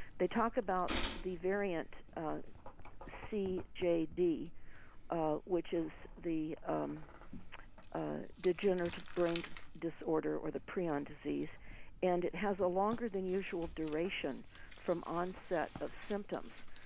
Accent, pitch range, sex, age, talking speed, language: American, 155-190 Hz, female, 50-69, 115 wpm, English